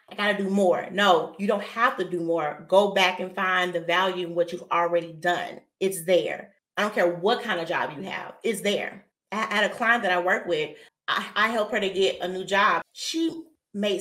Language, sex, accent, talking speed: English, female, American, 235 wpm